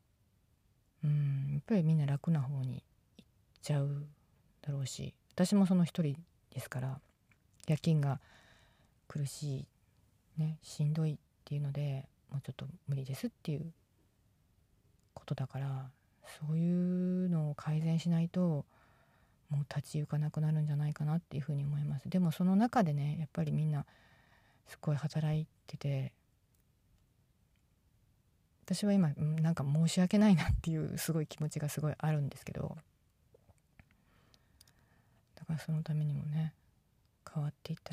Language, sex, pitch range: Japanese, female, 120-155 Hz